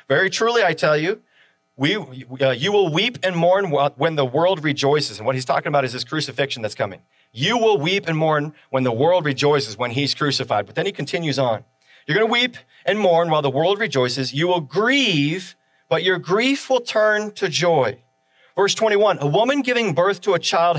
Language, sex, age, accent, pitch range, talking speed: English, male, 40-59, American, 130-185 Hz, 210 wpm